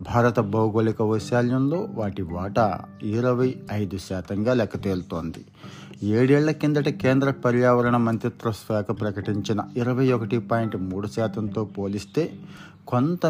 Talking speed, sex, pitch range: 110 wpm, male, 100-125 Hz